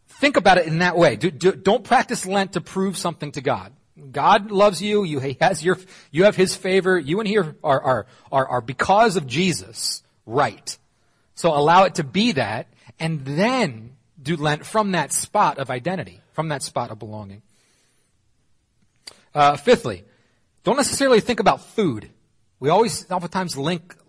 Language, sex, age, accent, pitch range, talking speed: English, male, 30-49, American, 135-190 Hz, 170 wpm